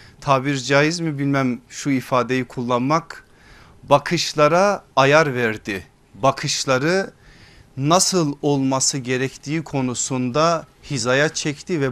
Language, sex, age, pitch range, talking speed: Turkish, male, 40-59, 135-175 Hz, 85 wpm